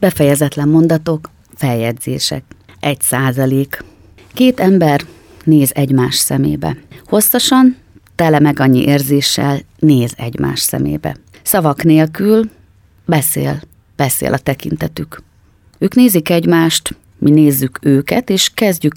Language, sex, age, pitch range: Hungarian, female, 30-49, 140-170 Hz